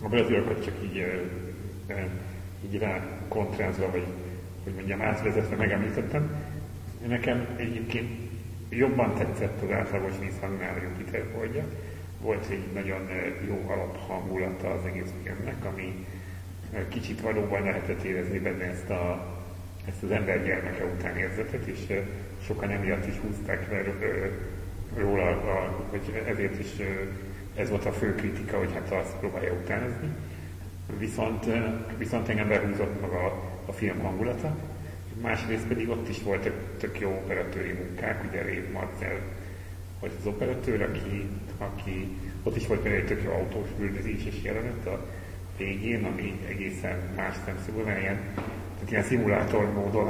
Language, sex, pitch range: English, male, 95-105 Hz